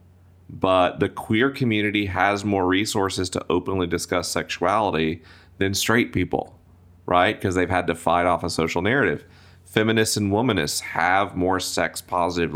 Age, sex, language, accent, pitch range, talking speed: 40-59, male, English, American, 85-95 Hz, 150 wpm